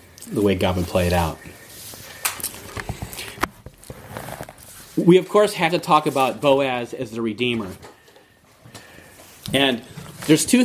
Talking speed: 120 wpm